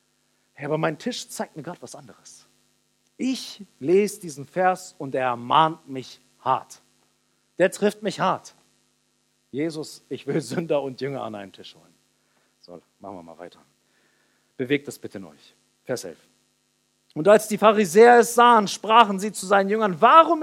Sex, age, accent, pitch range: male, 50-69, German, 175-245 Hz